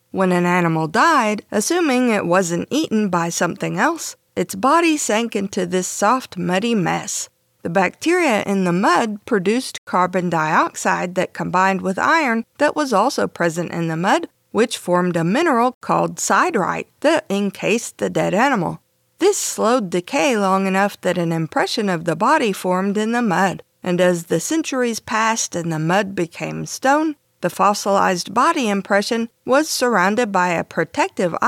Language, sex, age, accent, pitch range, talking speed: English, female, 50-69, American, 180-250 Hz, 160 wpm